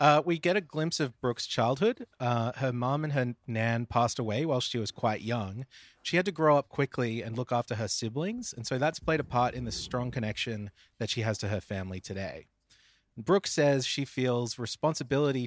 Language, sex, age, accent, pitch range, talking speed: English, male, 30-49, Australian, 110-140 Hz, 210 wpm